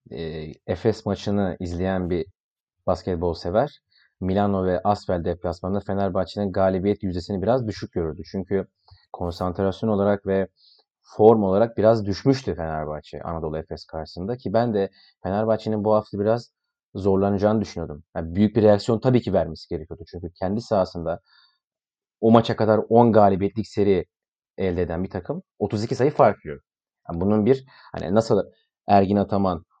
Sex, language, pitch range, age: male, Turkish, 95-115 Hz, 30-49